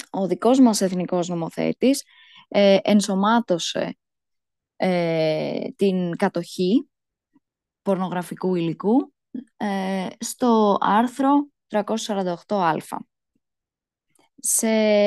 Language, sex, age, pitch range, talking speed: Greek, female, 20-39, 175-225 Hz, 70 wpm